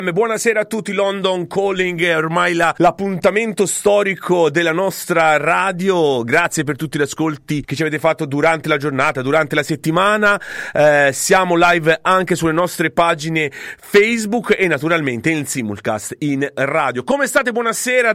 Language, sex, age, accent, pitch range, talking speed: English, male, 40-59, Italian, 150-195 Hz, 150 wpm